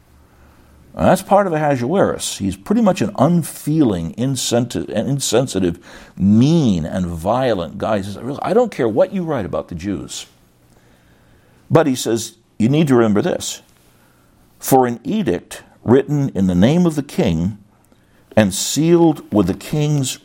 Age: 60-79